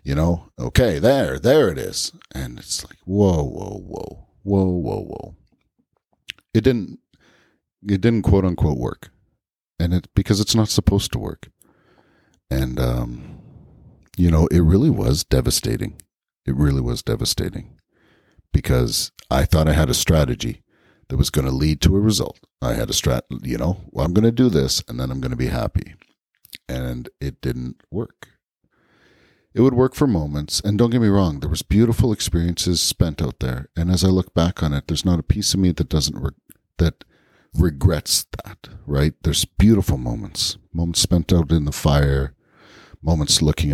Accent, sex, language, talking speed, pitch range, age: American, male, English, 175 wpm, 70-95 Hz, 60-79